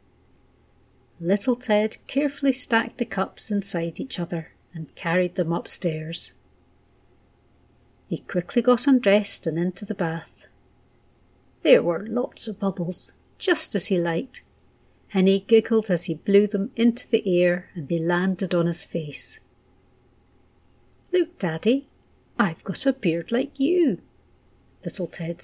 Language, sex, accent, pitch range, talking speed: English, female, British, 170-235 Hz, 130 wpm